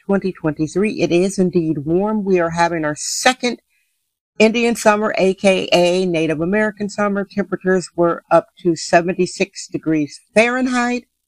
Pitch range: 165-200 Hz